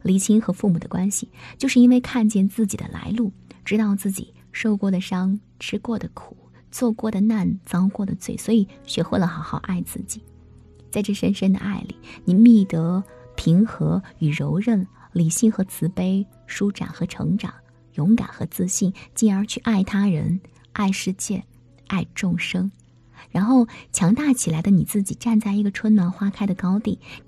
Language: Chinese